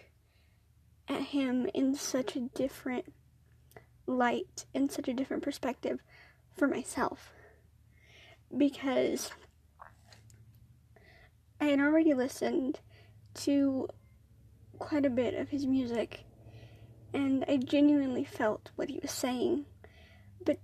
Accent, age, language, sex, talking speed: American, 30-49, English, female, 100 wpm